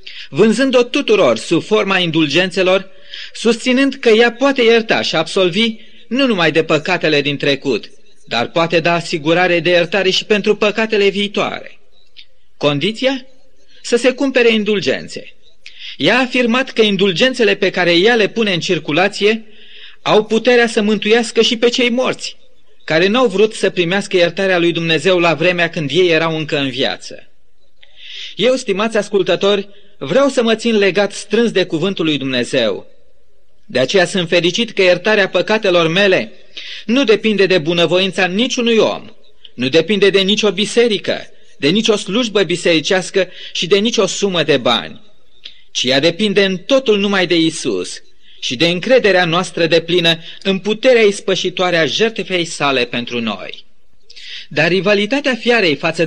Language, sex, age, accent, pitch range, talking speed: Romanian, male, 30-49, native, 175-225 Hz, 150 wpm